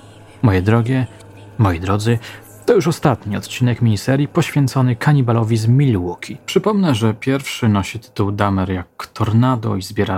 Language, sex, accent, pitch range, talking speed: Polish, male, native, 100-135 Hz, 135 wpm